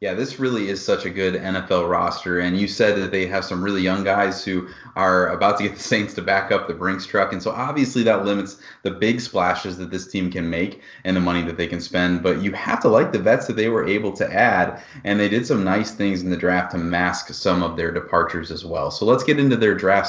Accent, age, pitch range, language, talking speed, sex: American, 30-49, 90-105 Hz, English, 265 wpm, male